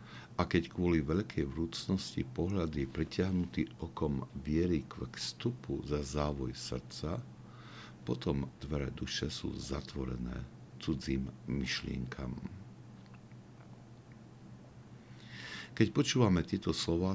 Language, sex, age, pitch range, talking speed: Slovak, male, 60-79, 65-85 Hz, 90 wpm